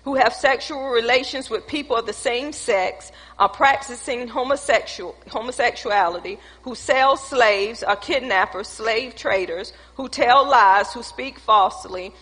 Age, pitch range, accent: 40-59, 220-290 Hz, American